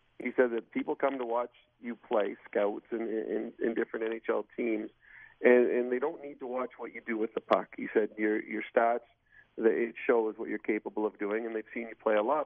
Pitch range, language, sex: 115-130 Hz, English, male